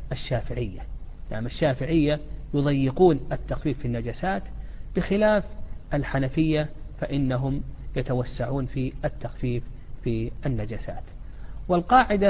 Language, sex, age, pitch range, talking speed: Arabic, male, 50-69, 130-175 Hz, 85 wpm